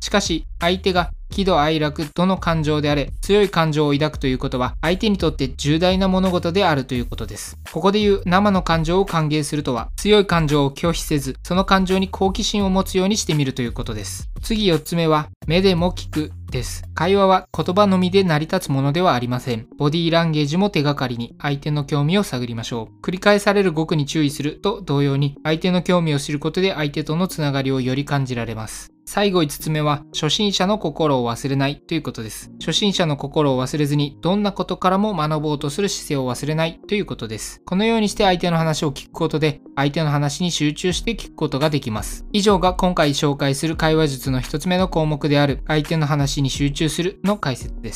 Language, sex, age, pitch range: Japanese, male, 20-39, 140-185 Hz